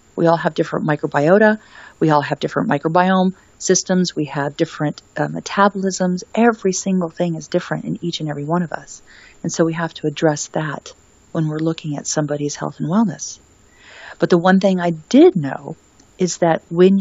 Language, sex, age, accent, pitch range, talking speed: English, female, 40-59, American, 150-175 Hz, 185 wpm